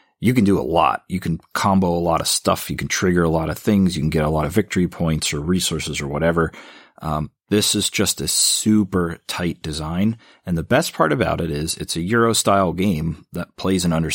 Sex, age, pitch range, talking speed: male, 30-49, 80-100 Hz, 235 wpm